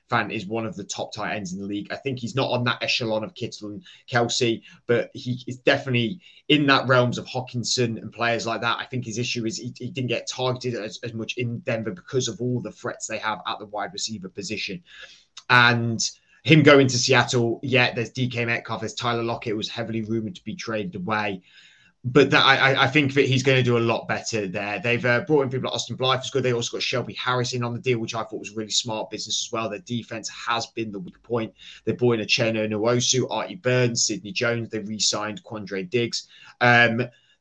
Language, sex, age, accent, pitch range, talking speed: English, male, 20-39, British, 110-125 Hz, 235 wpm